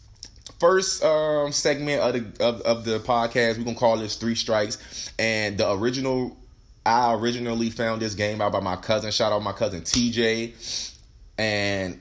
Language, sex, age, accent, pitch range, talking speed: English, male, 20-39, American, 95-125 Hz, 165 wpm